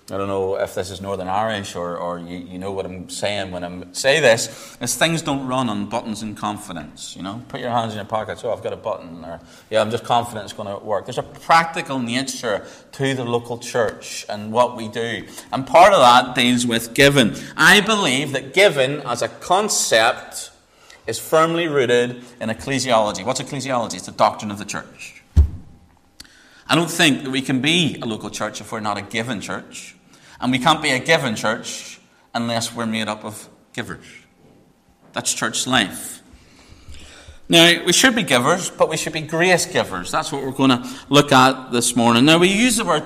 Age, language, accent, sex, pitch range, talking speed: 30-49, English, British, male, 105-140 Hz, 205 wpm